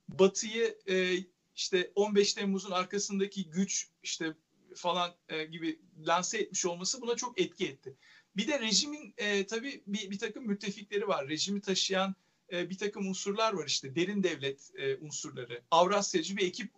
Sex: male